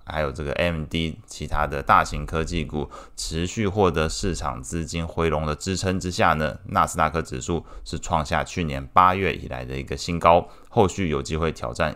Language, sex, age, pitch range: Chinese, male, 20-39, 75-90 Hz